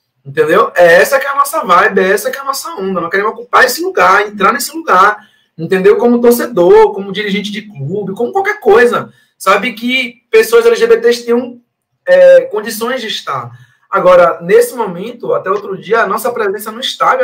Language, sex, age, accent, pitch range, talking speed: Portuguese, male, 20-39, Brazilian, 155-220 Hz, 185 wpm